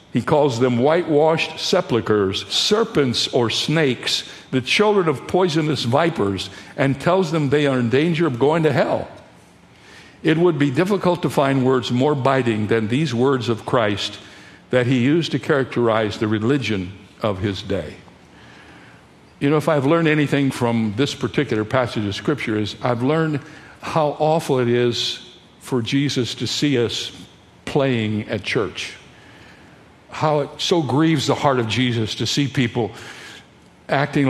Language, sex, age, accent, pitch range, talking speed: English, male, 60-79, American, 120-160 Hz, 150 wpm